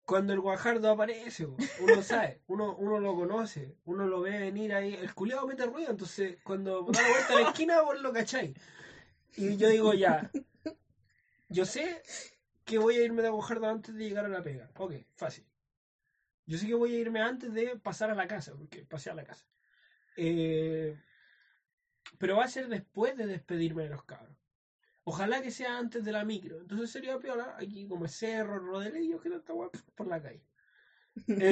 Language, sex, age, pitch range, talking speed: Spanish, male, 20-39, 170-235 Hz, 190 wpm